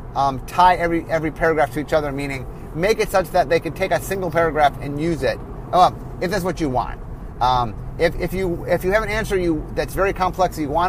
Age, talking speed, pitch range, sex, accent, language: 30-49, 235 wpm, 145-180 Hz, male, American, English